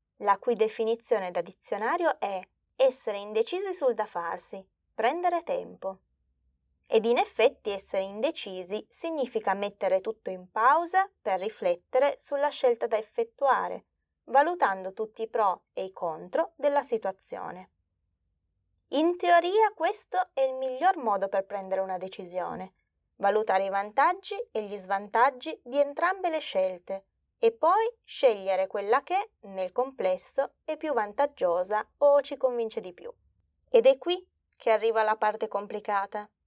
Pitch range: 200-315 Hz